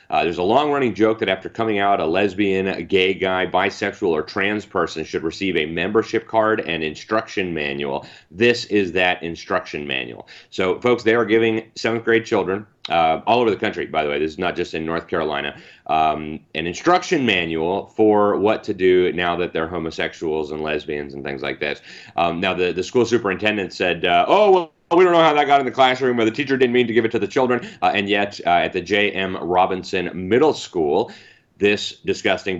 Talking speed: 210 wpm